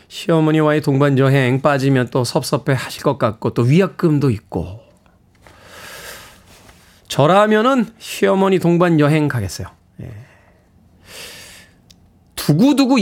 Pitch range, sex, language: 130-180 Hz, male, Korean